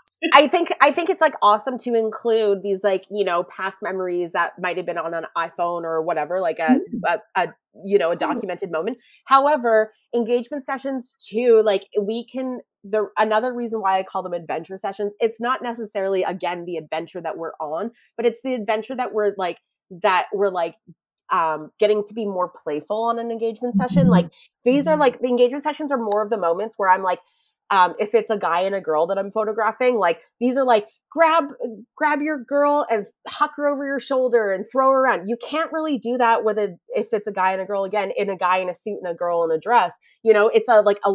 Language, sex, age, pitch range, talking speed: English, female, 30-49, 185-250 Hz, 225 wpm